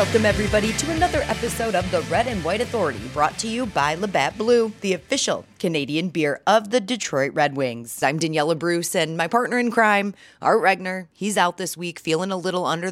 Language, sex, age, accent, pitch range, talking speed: English, female, 30-49, American, 155-210 Hz, 205 wpm